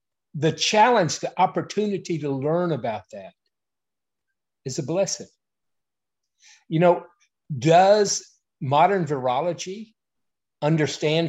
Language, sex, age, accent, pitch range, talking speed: English, male, 50-69, American, 140-180 Hz, 90 wpm